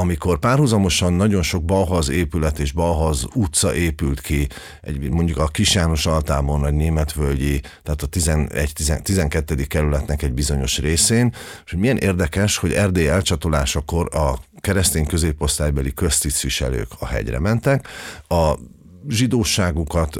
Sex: male